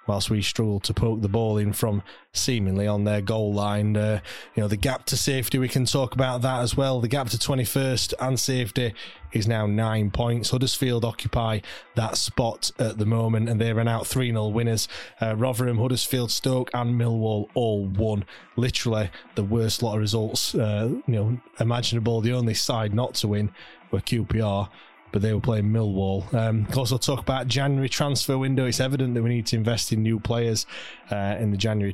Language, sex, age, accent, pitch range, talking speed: English, male, 20-39, British, 105-125 Hz, 195 wpm